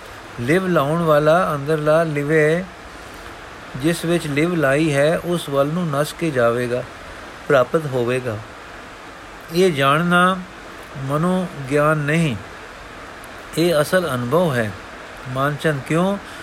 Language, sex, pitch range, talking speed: Punjabi, male, 140-170 Hz, 110 wpm